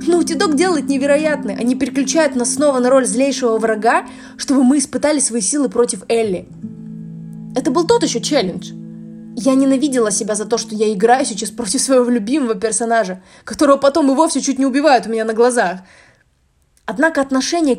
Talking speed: 170 wpm